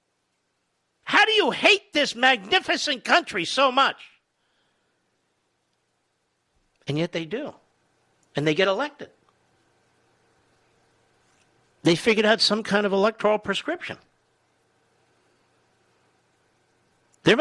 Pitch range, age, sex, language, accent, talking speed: 160-240 Hz, 50-69, male, English, American, 90 wpm